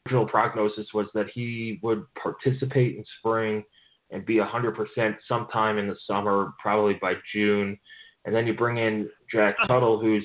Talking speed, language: 165 wpm, English